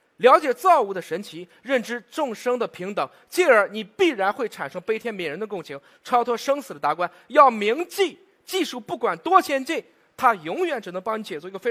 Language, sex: Chinese, male